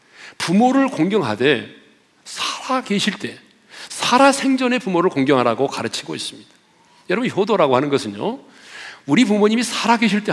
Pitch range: 200-255 Hz